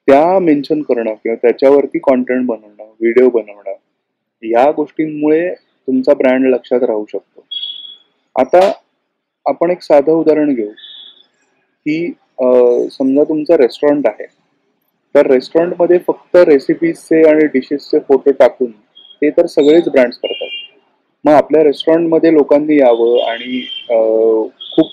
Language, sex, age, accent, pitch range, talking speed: Marathi, male, 30-49, native, 130-180 Hz, 115 wpm